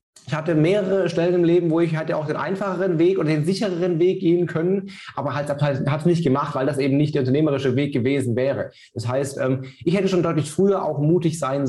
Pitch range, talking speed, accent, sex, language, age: 140-175 Hz, 225 wpm, German, male, German, 20-39